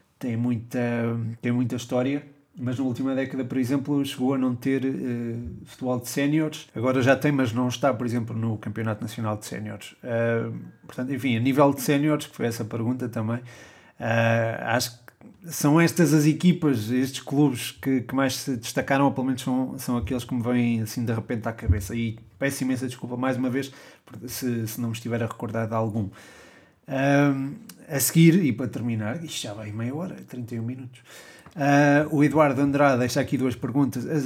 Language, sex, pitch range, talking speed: Portuguese, male, 115-140 Hz, 190 wpm